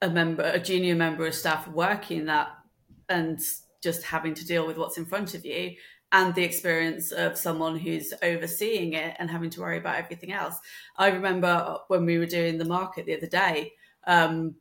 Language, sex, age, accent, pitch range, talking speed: English, female, 30-49, British, 170-230 Hz, 195 wpm